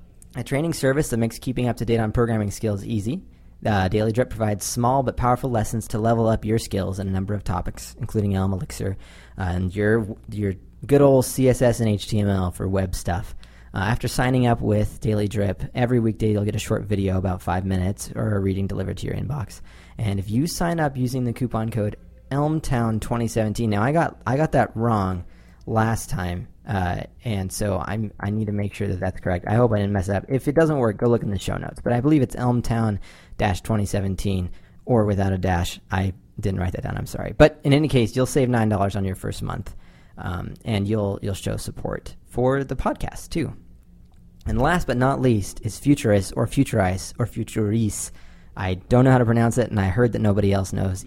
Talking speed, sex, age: 215 wpm, male, 40-59